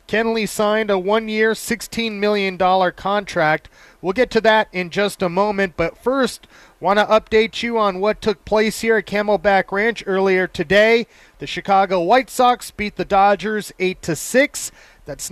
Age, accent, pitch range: 30-49, American, 185-220 Hz